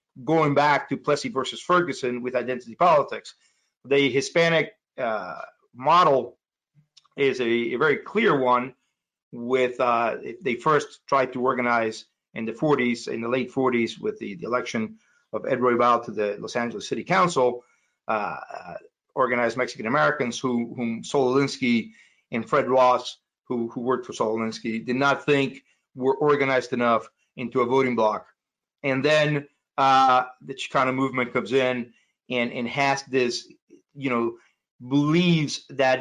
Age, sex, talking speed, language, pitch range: 40-59, male, 145 wpm, English, 120-145 Hz